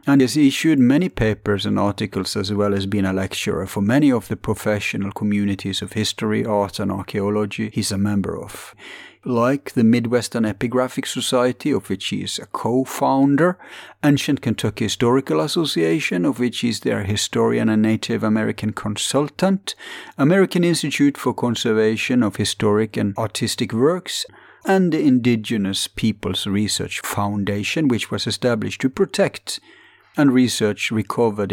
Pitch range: 100-130 Hz